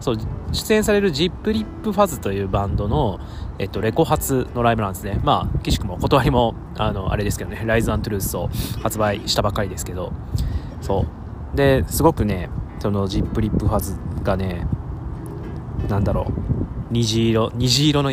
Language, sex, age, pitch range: Japanese, male, 20-39, 95-125 Hz